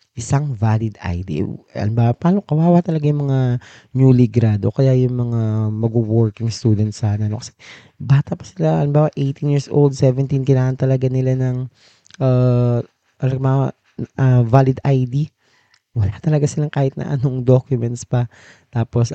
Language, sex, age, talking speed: Filipino, male, 20-39, 150 wpm